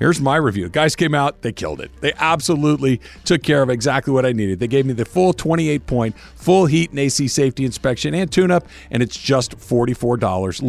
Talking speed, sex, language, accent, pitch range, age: 200 wpm, male, English, American, 120-160 Hz, 50-69